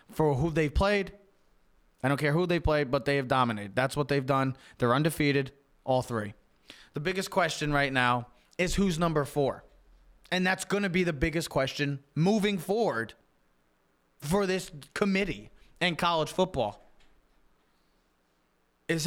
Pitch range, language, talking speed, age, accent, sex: 135-195 Hz, English, 150 wpm, 20-39, American, male